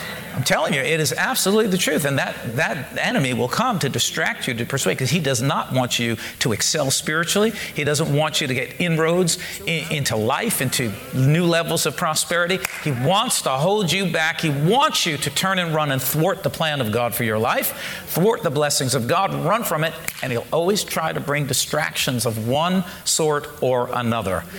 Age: 50-69